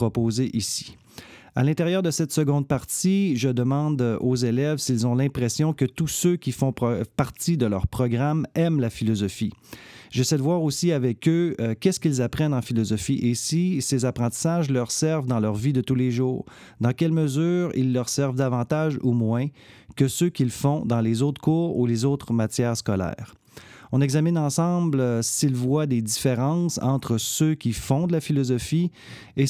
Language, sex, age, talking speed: French, male, 30-49, 185 wpm